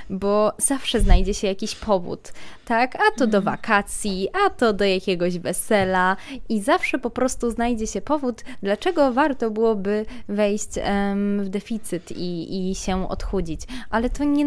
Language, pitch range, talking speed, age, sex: Polish, 200-235 Hz, 150 wpm, 20-39, female